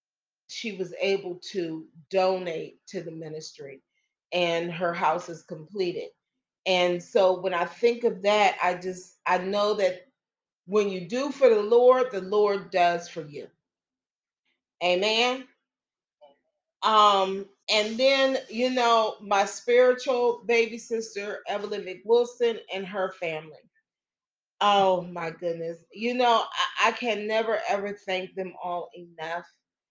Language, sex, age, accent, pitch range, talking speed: English, female, 40-59, American, 180-220 Hz, 130 wpm